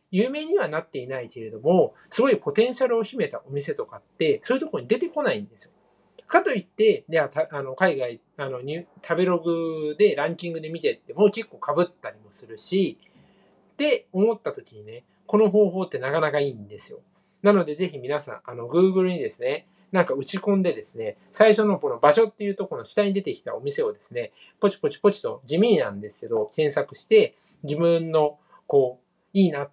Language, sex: Japanese, male